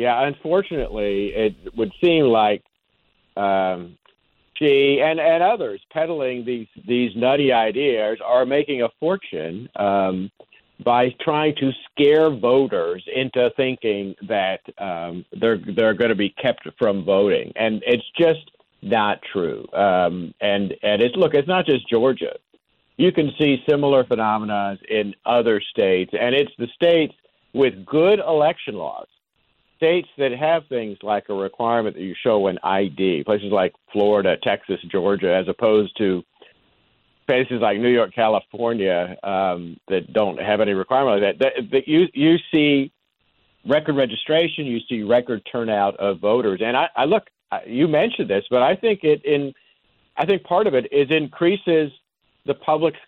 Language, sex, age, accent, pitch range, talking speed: English, male, 50-69, American, 105-155 Hz, 145 wpm